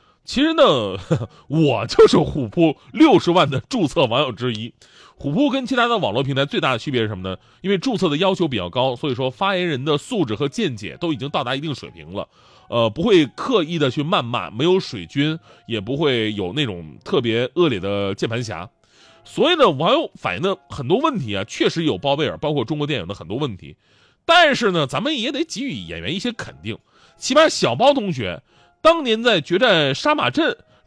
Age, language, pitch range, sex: 30-49, Chinese, 120-180 Hz, male